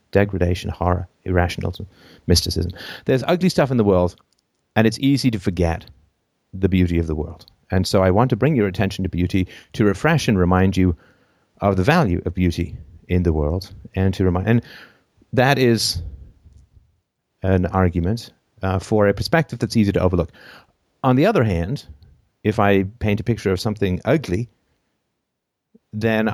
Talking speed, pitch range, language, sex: 165 wpm, 90-115 Hz, English, male